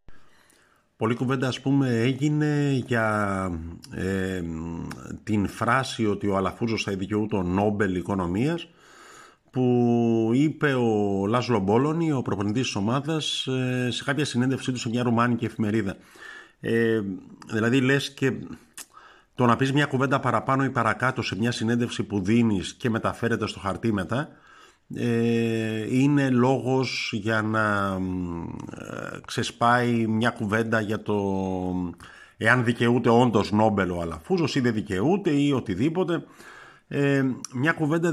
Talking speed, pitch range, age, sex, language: 125 wpm, 105-135 Hz, 50-69, male, Greek